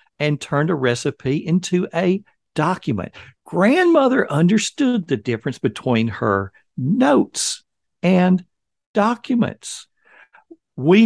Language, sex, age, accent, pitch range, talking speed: English, male, 50-69, American, 125-175 Hz, 90 wpm